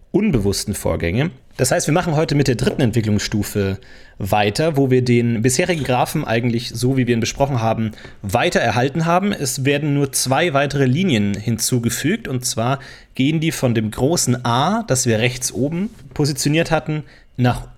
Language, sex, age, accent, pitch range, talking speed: German, male, 30-49, German, 115-150 Hz, 165 wpm